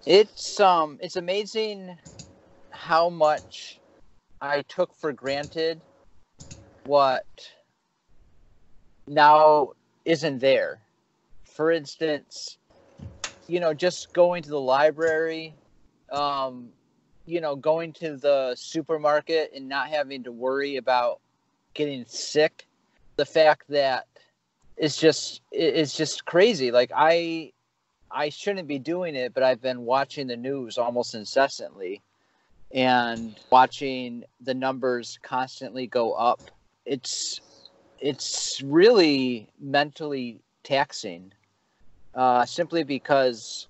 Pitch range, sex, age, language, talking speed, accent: 125-160 Hz, male, 40-59, English, 105 wpm, American